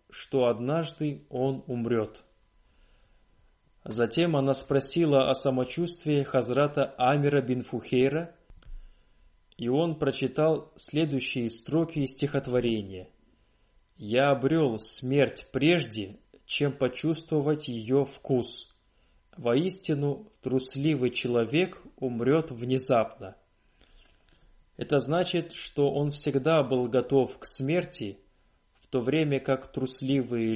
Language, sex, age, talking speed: Russian, male, 20-39, 90 wpm